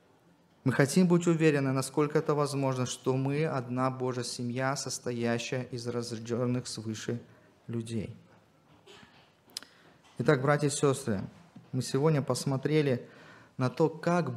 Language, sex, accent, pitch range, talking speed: Russian, male, native, 120-145 Hz, 115 wpm